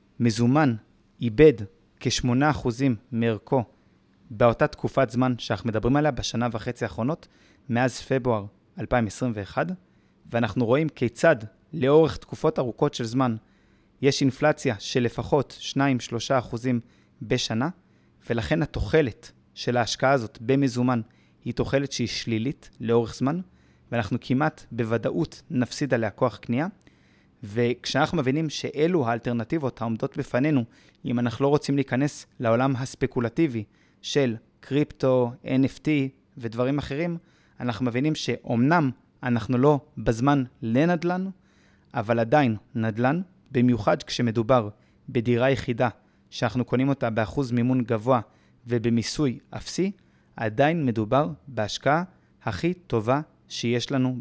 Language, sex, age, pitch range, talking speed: Hebrew, male, 20-39, 115-140 Hz, 105 wpm